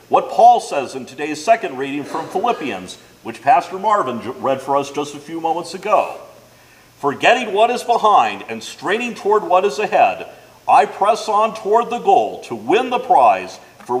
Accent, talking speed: American, 175 wpm